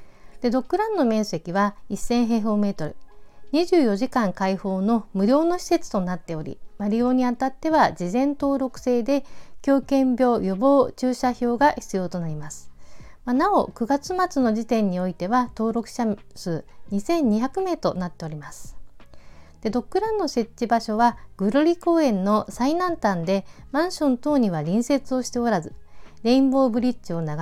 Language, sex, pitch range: Japanese, female, 195-275 Hz